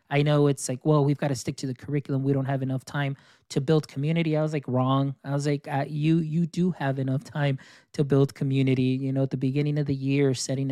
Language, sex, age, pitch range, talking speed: English, male, 20-39, 140-160 Hz, 260 wpm